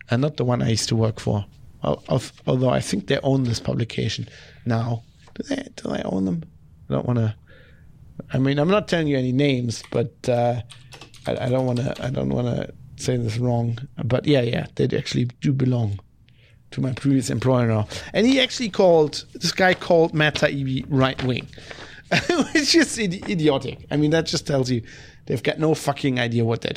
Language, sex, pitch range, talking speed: English, male, 120-145 Hz, 195 wpm